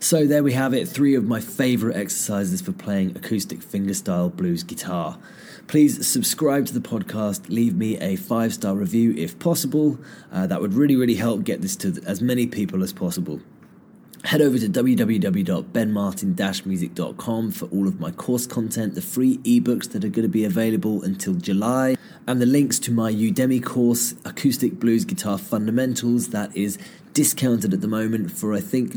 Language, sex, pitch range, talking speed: English, male, 100-135 Hz, 175 wpm